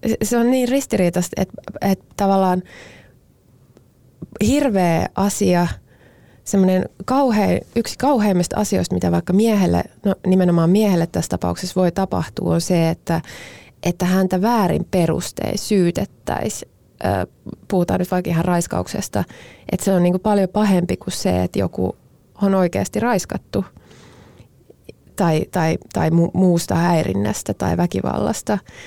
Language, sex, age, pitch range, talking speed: Finnish, female, 20-39, 160-195 Hz, 115 wpm